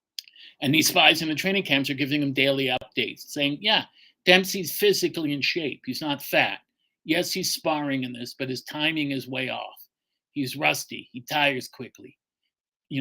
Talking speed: 175 wpm